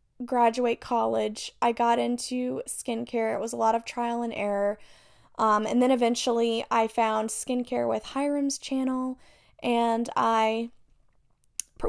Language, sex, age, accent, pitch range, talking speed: English, female, 10-29, American, 225-255 Hz, 135 wpm